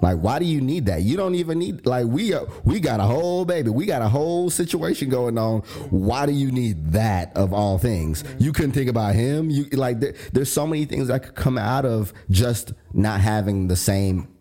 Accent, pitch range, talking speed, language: American, 95-120 Hz, 230 wpm, English